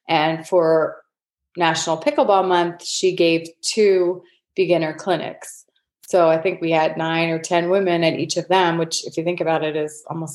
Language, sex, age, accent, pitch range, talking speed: English, female, 30-49, American, 160-185 Hz, 180 wpm